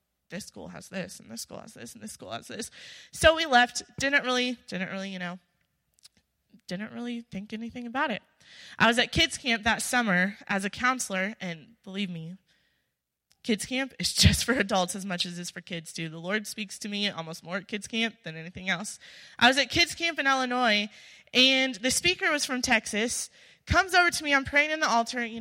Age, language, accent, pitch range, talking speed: 20-39, English, American, 195-265 Hz, 215 wpm